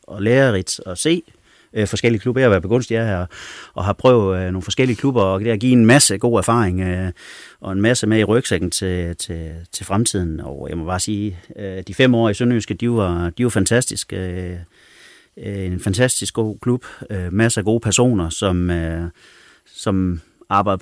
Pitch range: 90-115 Hz